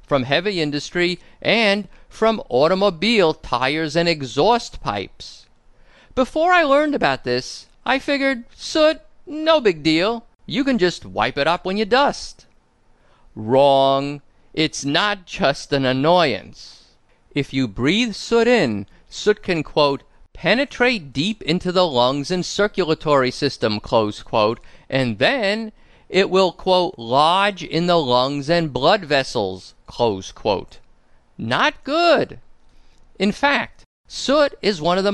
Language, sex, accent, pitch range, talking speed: English, male, American, 140-225 Hz, 130 wpm